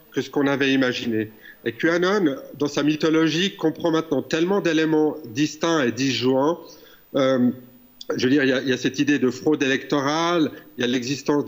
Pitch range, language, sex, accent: 120-150 Hz, French, male, French